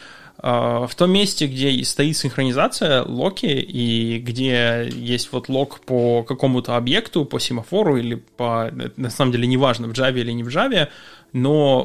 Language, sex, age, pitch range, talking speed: Russian, male, 20-39, 120-150 Hz, 150 wpm